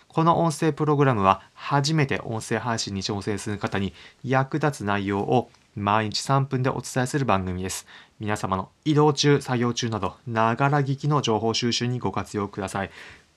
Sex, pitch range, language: male, 105-135 Hz, Japanese